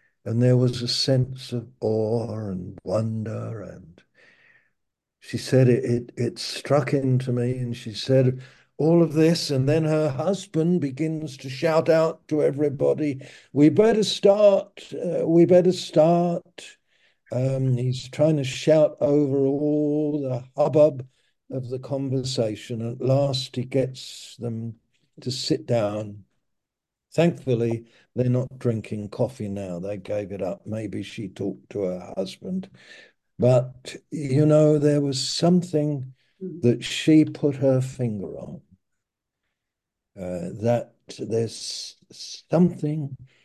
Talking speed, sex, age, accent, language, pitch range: 130 wpm, male, 60-79, British, English, 120-150 Hz